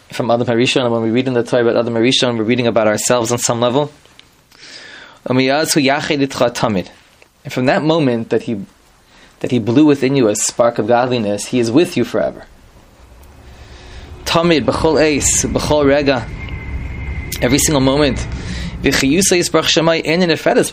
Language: English